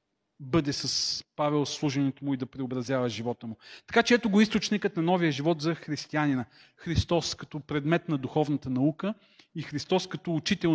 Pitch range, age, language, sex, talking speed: 140-180 Hz, 40-59, Bulgarian, male, 165 wpm